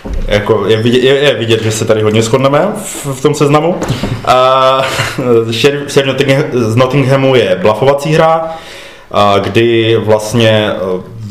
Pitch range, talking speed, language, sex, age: 105-130 Hz, 145 wpm, Czech, male, 20-39